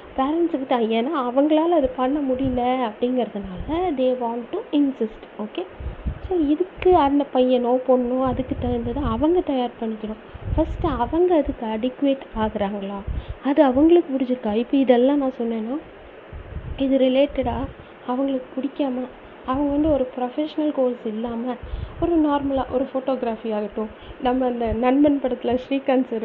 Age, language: 20-39, Tamil